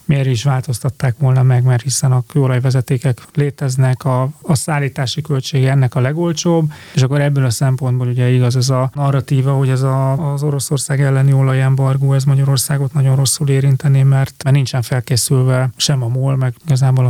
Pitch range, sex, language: 130-145 Hz, male, Hungarian